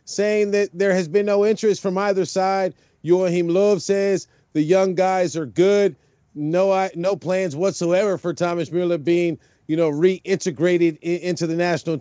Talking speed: 170 wpm